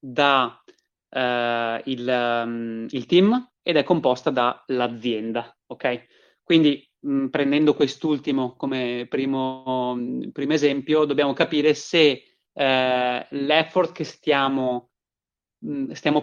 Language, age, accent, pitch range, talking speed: Italian, 30-49, native, 125-145 Hz, 90 wpm